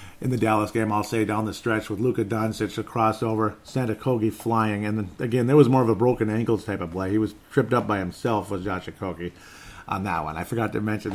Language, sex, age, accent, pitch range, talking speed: English, male, 50-69, American, 95-120 Hz, 250 wpm